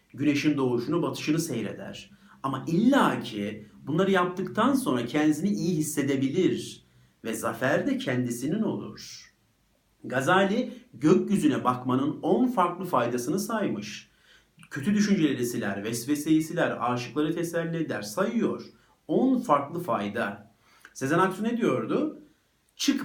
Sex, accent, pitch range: male, native, 120-190 Hz